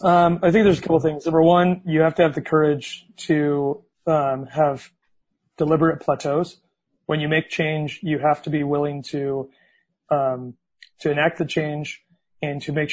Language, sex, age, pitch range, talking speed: English, male, 30-49, 145-165 Hz, 180 wpm